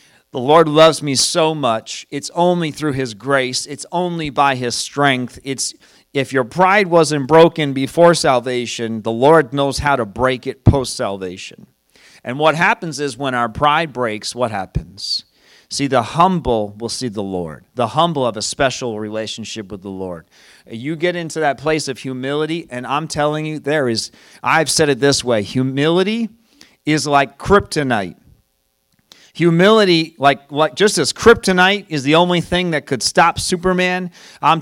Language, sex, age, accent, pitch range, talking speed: English, male, 40-59, American, 125-170 Hz, 165 wpm